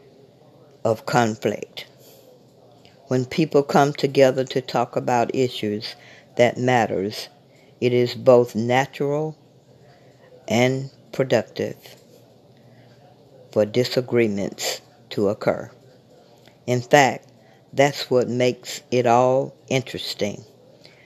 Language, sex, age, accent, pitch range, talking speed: English, female, 60-79, American, 115-140 Hz, 85 wpm